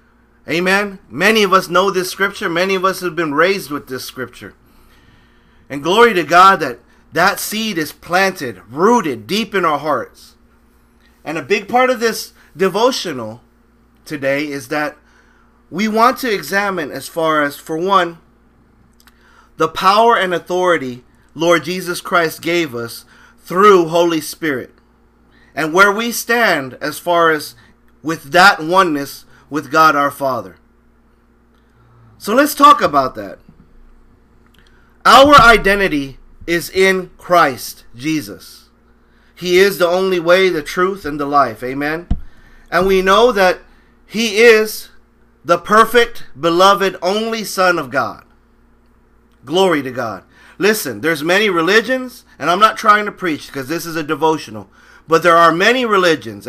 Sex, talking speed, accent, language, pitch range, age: male, 140 wpm, American, English, 140-195 Hz, 30-49